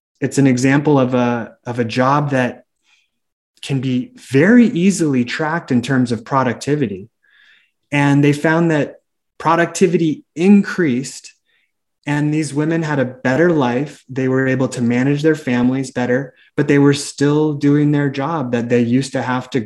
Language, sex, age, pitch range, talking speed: English, male, 30-49, 120-145 Hz, 155 wpm